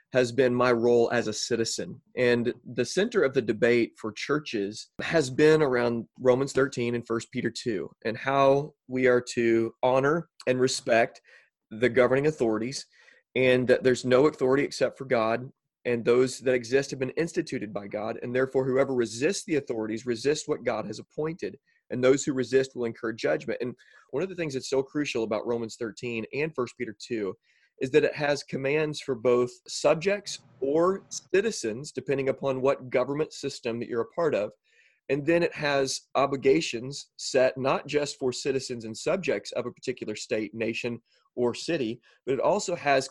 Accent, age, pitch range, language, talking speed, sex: American, 30-49, 120-145 Hz, English, 180 wpm, male